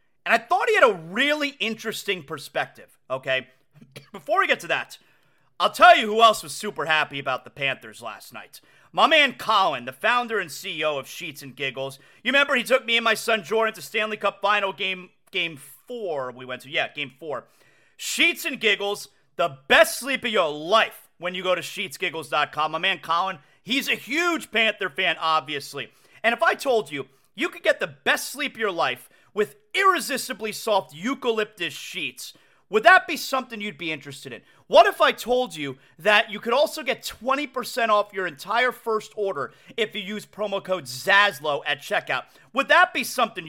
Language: English